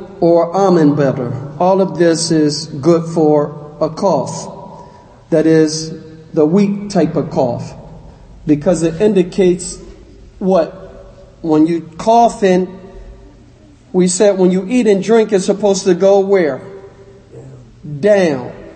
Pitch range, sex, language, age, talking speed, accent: 155-195 Hz, male, English, 50-69, 125 wpm, American